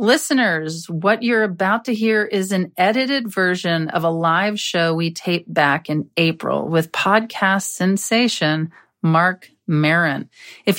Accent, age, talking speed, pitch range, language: American, 40-59, 140 wpm, 175-230 Hz, English